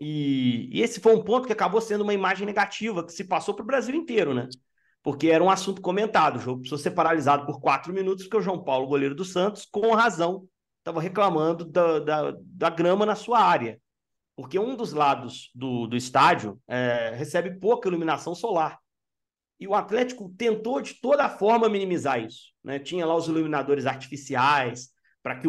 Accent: Brazilian